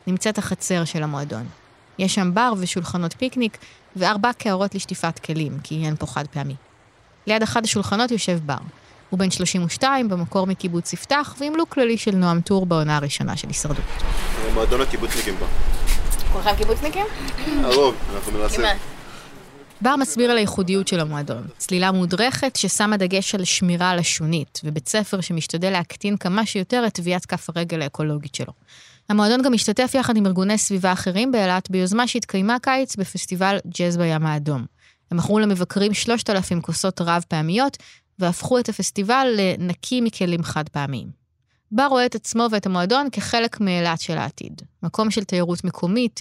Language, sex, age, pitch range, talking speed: Hebrew, female, 20-39, 170-220 Hz, 140 wpm